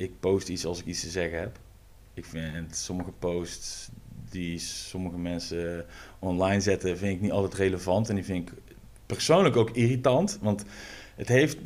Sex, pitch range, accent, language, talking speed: male, 90-110 Hz, Dutch, Dutch, 170 wpm